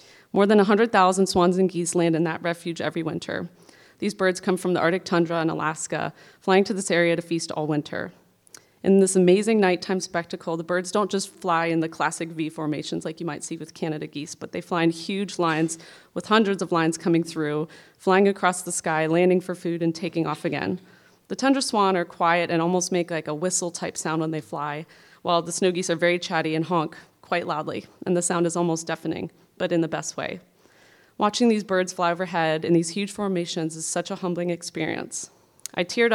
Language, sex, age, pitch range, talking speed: English, female, 30-49, 165-185 Hz, 210 wpm